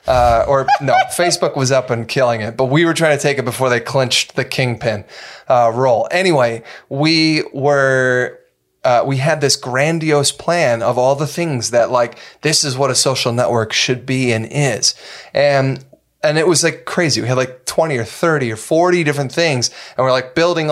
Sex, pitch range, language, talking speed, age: male, 120-150 Hz, English, 195 wpm, 20-39